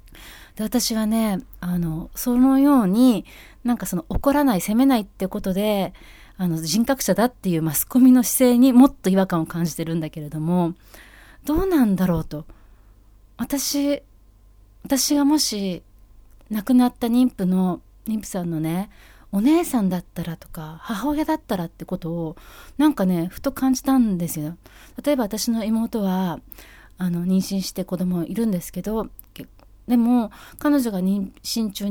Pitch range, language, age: 170-255 Hz, Japanese, 30-49